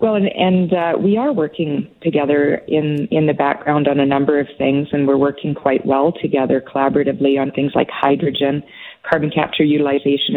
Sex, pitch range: female, 145-170 Hz